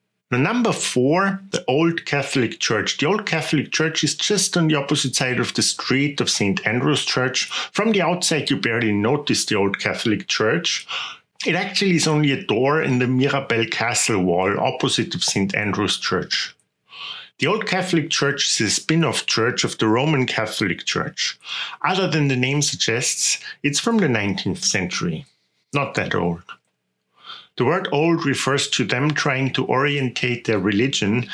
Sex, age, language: male, 50-69, English